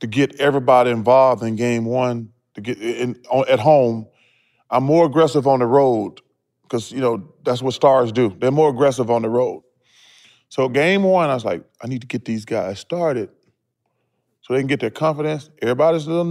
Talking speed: 200 wpm